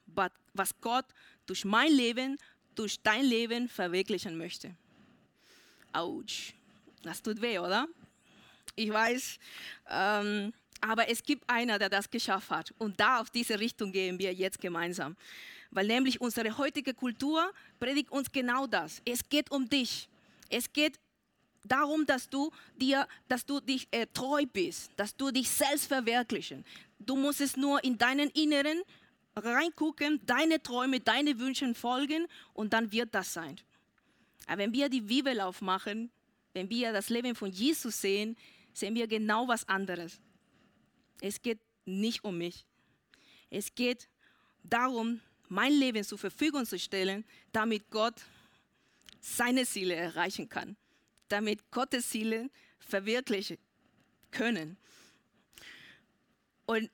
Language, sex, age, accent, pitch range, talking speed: German, female, 20-39, German, 205-265 Hz, 135 wpm